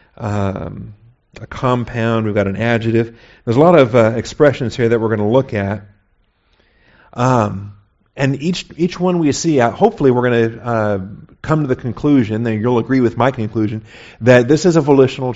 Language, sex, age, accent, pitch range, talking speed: English, male, 50-69, American, 110-135 Hz, 190 wpm